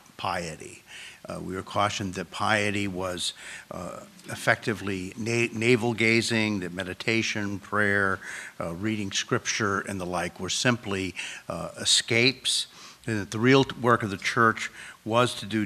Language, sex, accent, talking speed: English, male, American, 140 wpm